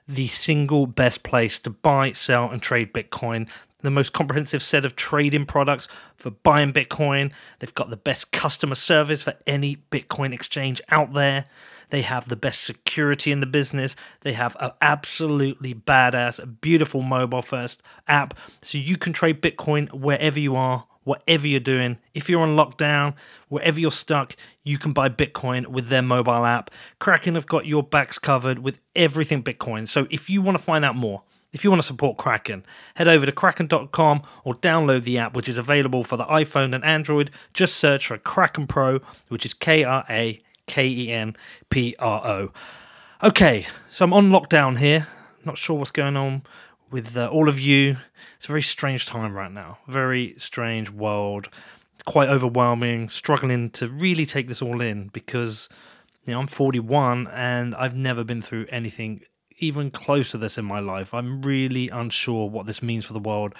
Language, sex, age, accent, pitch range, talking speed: English, male, 30-49, British, 120-150 Hz, 175 wpm